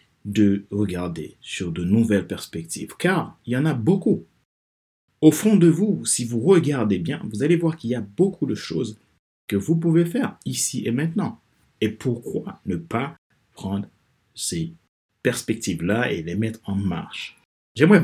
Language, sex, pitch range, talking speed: French, male, 100-145 Hz, 165 wpm